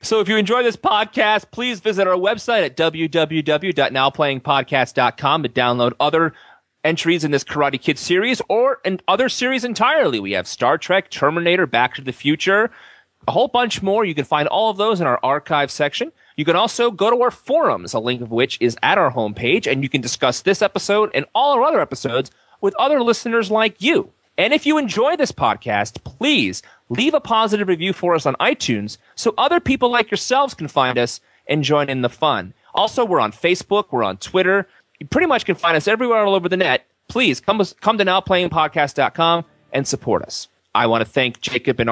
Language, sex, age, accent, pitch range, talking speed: English, male, 30-49, American, 145-225 Hz, 200 wpm